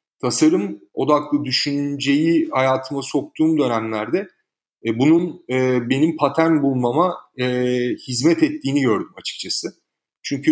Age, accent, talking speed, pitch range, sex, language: 40-59, native, 105 wpm, 120-150 Hz, male, Turkish